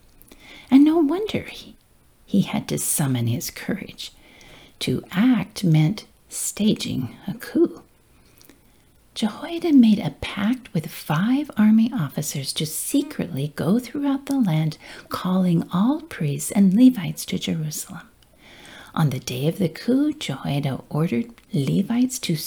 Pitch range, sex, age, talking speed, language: 165-255 Hz, female, 50-69, 125 wpm, English